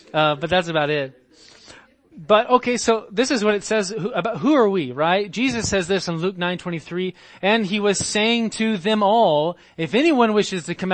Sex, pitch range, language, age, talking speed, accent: male, 150-225 Hz, English, 30-49, 210 wpm, American